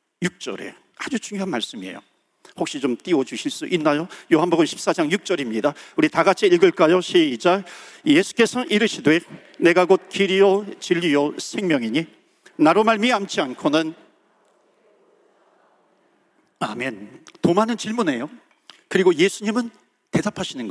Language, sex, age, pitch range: Korean, male, 50-69, 190-250 Hz